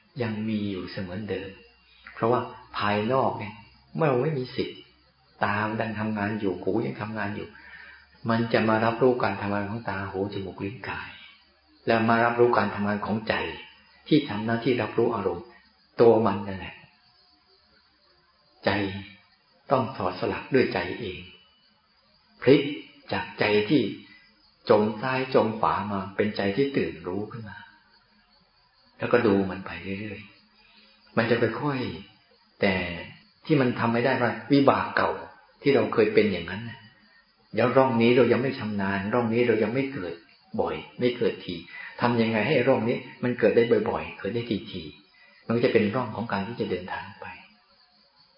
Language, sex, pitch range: Thai, male, 100-120 Hz